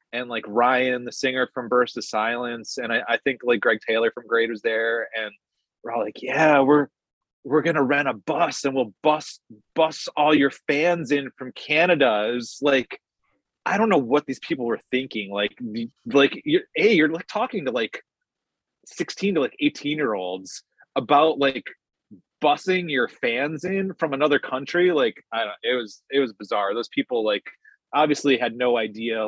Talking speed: 185 wpm